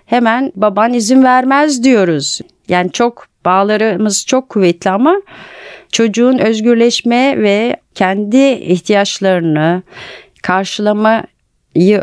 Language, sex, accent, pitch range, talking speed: Turkish, female, native, 185-230 Hz, 85 wpm